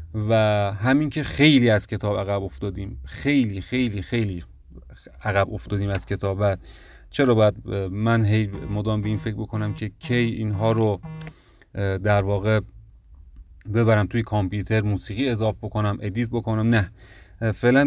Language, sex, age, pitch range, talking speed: Persian, male, 30-49, 100-120 Hz, 130 wpm